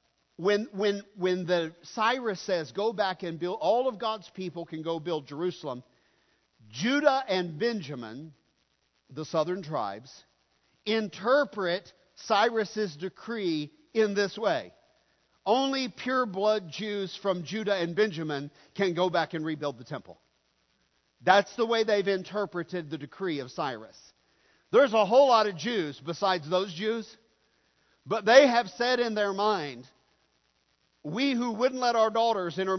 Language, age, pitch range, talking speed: English, 50-69, 160-215 Hz, 140 wpm